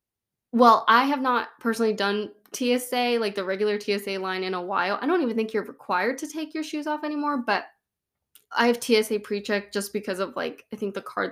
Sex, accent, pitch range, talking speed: female, American, 190-235 Hz, 210 wpm